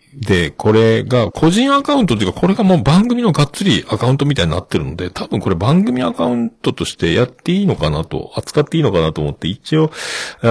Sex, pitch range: male, 85-135 Hz